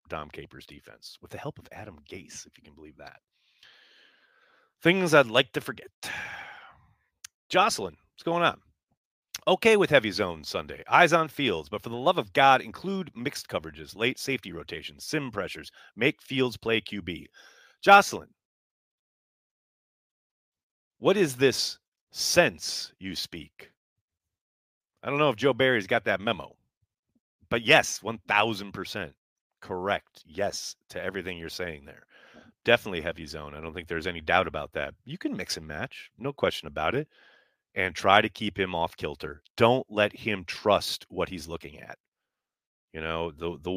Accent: American